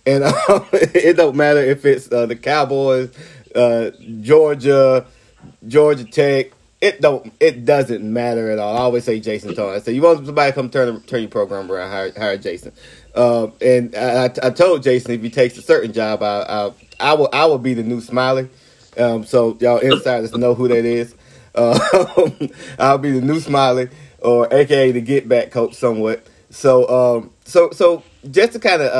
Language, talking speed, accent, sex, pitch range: English, 190 wpm, American, male, 115-145 Hz